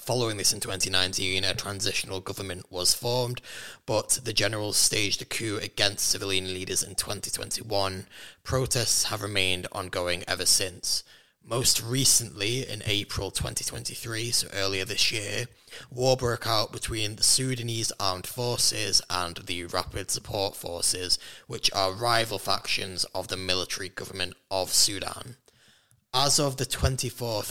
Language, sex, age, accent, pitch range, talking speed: English, male, 20-39, British, 95-120 Hz, 135 wpm